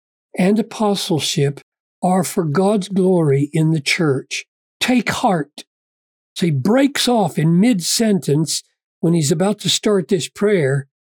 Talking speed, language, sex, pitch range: 130 wpm, English, male, 140-195 Hz